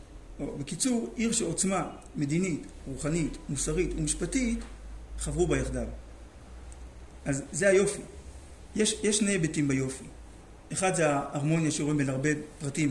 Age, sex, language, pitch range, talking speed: 50-69, male, Hebrew, 135-170 Hz, 115 wpm